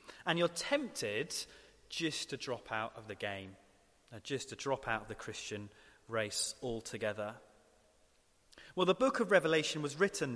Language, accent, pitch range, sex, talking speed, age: English, British, 120-180 Hz, male, 155 wpm, 30-49